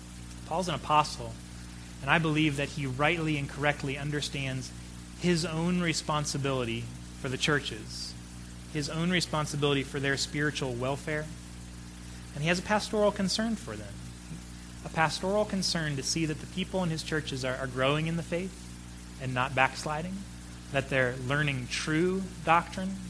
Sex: male